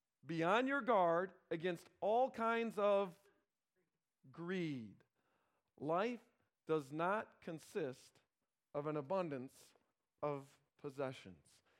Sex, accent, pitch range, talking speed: male, American, 145-230 Hz, 90 wpm